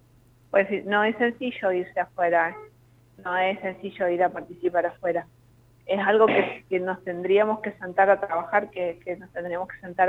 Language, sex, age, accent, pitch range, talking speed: Spanish, female, 30-49, Argentinian, 165-195 Hz, 180 wpm